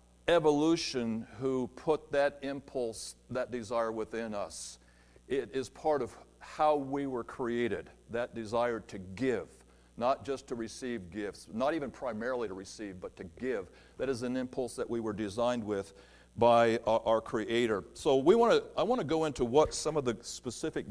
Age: 50-69